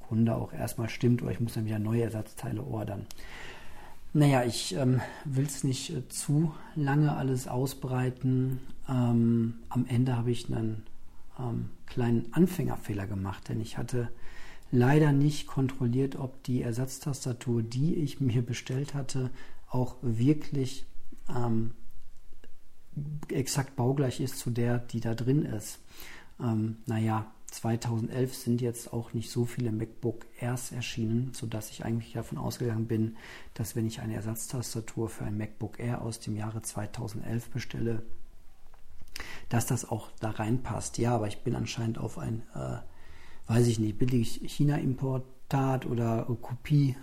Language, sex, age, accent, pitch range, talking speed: German, male, 50-69, German, 115-130 Hz, 140 wpm